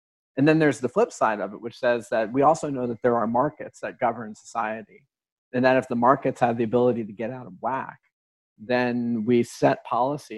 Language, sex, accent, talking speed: English, male, American, 220 wpm